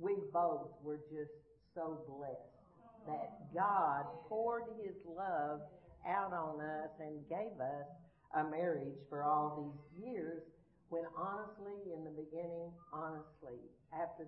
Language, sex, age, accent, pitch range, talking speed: English, female, 60-79, American, 145-175 Hz, 125 wpm